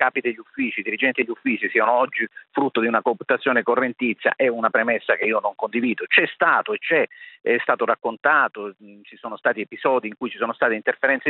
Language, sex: Italian, male